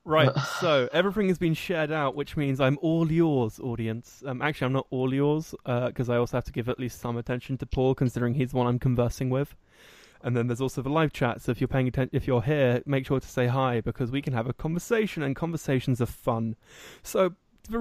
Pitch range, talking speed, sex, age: 125-150 Hz, 240 wpm, male, 20-39